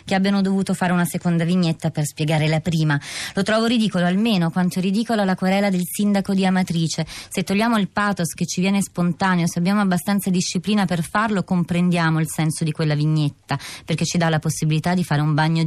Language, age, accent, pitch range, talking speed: Italian, 20-39, native, 155-185 Hz, 200 wpm